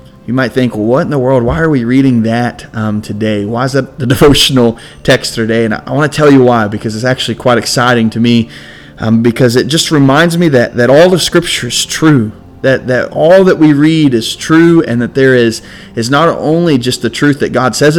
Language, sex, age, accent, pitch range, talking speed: English, male, 30-49, American, 115-145 Hz, 235 wpm